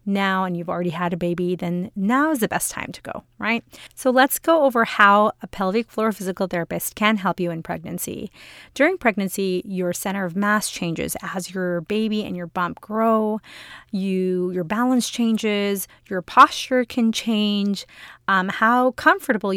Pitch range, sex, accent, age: 180-230 Hz, female, American, 30-49